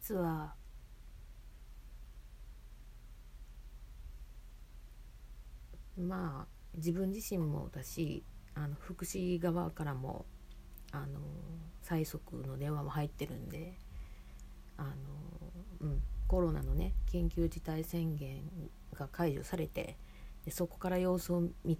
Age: 40-59